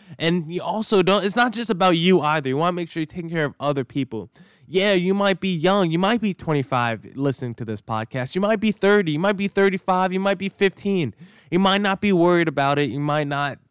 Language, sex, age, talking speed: English, male, 10-29, 245 wpm